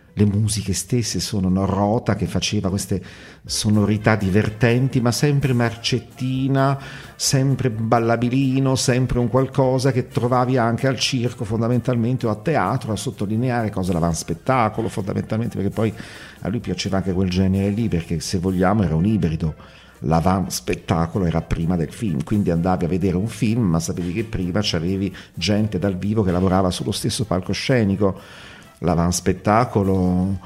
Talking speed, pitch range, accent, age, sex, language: 145 wpm, 90-115 Hz, native, 50-69, male, Italian